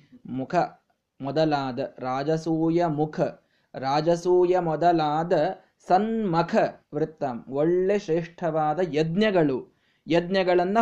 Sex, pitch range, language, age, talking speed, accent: male, 165-230 Hz, Kannada, 20-39, 65 wpm, native